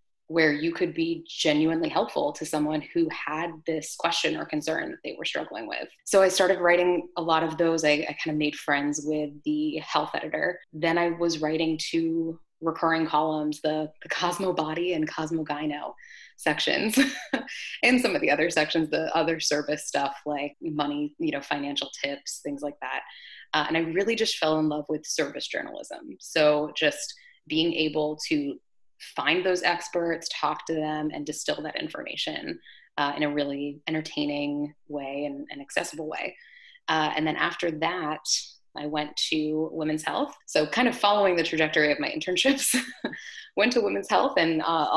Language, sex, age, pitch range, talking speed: English, female, 20-39, 150-170 Hz, 175 wpm